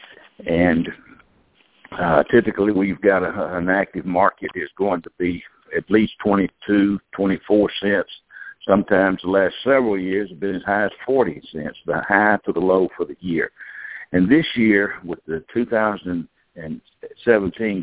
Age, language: 60-79, English